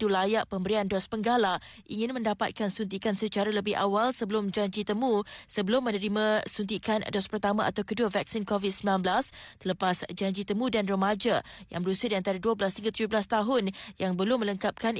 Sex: female